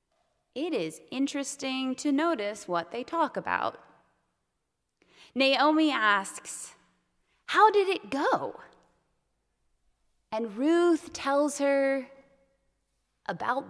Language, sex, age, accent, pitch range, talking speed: English, female, 20-39, American, 230-310 Hz, 90 wpm